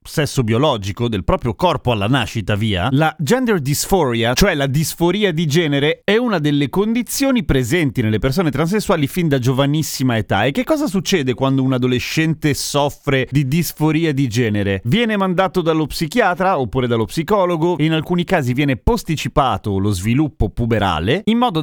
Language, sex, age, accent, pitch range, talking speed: Italian, male, 30-49, native, 120-165 Hz, 160 wpm